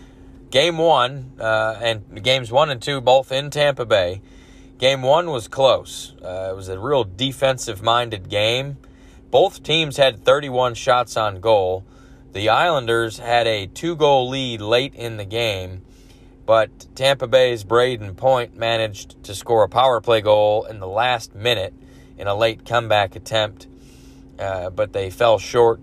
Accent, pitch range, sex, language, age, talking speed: American, 100-125 Hz, male, English, 30-49, 155 wpm